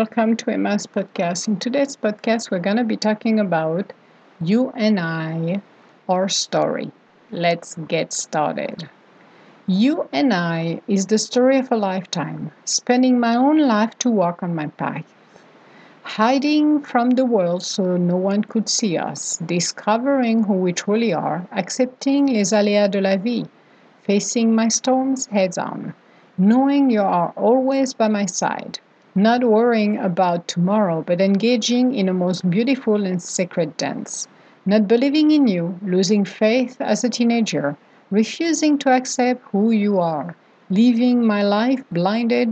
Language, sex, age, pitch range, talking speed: English, female, 50-69, 185-240 Hz, 145 wpm